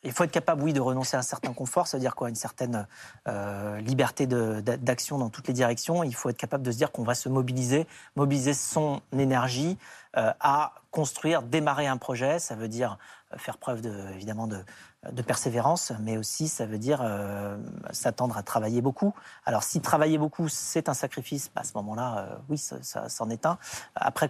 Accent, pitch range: French, 115-150 Hz